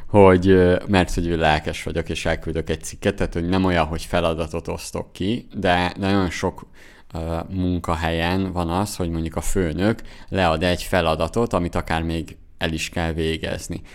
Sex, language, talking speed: male, Hungarian, 160 wpm